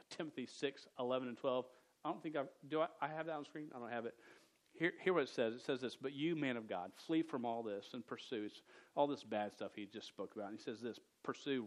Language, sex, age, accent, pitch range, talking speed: English, male, 40-59, American, 115-140 Hz, 260 wpm